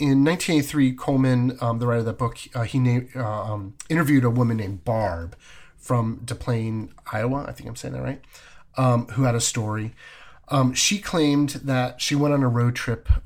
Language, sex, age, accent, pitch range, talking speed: English, male, 30-49, American, 105-130 Hz, 190 wpm